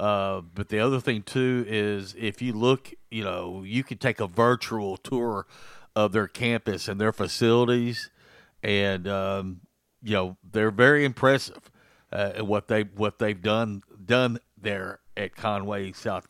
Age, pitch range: 50-69, 100-120 Hz